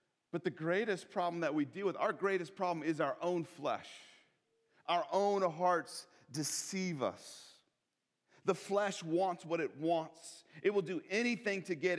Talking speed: 160 wpm